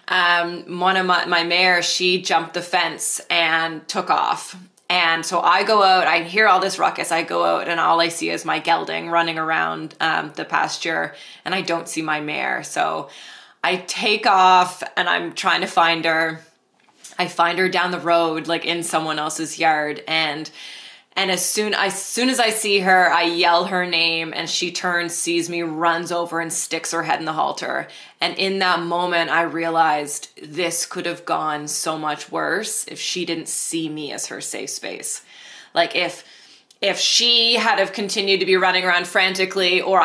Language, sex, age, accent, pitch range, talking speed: English, female, 20-39, American, 160-185 Hz, 190 wpm